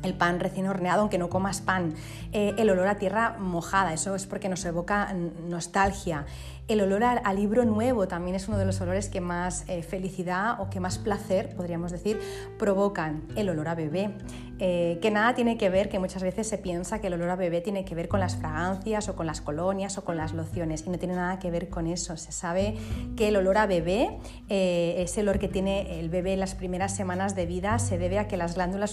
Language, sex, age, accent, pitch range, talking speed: Spanish, female, 30-49, Spanish, 170-200 Hz, 230 wpm